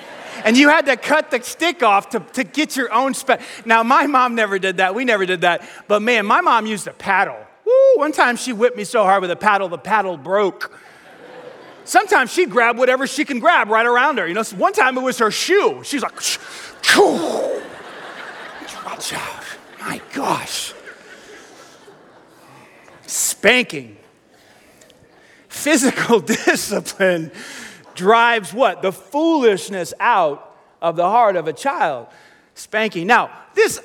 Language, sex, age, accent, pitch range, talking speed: English, male, 30-49, American, 195-275 Hz, 155 wpm